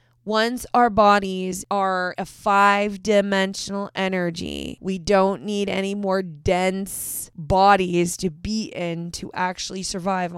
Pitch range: 185-220 Hz